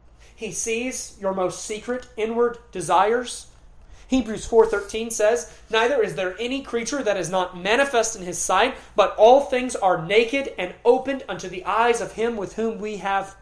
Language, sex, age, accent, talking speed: English, male, 30-49, American, 170 wpm